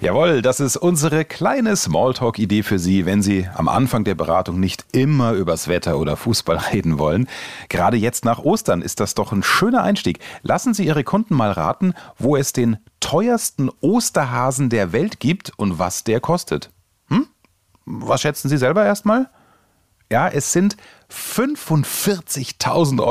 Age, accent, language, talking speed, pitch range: 30-49, German, German, 155 wpm, 105-160 Hz